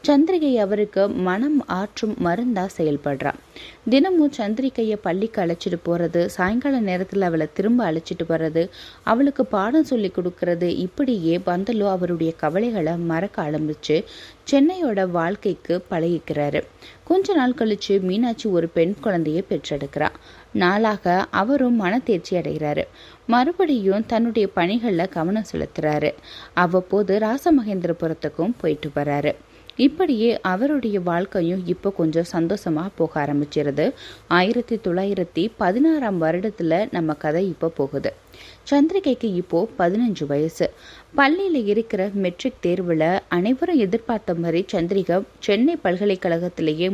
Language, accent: Tamil, native